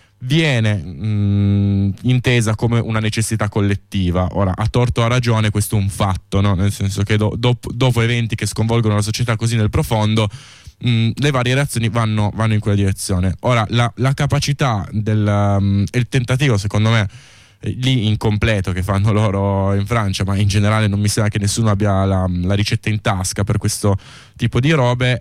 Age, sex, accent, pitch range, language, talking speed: 20-39, male, native, 100-120 Hz, Italian, 170 wpm